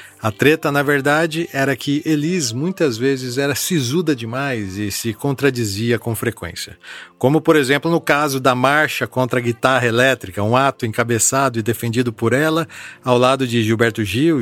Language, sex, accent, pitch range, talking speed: Portuguese, male, Brazilian, 115-150 Hz, 165 wpm